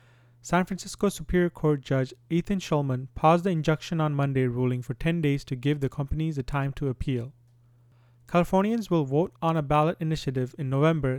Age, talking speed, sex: 30-49, 175 wpm, male